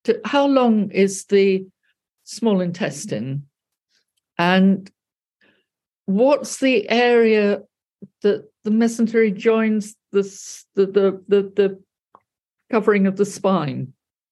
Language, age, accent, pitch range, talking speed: English, 50-69, British, 190-260 Hz, 100 wpm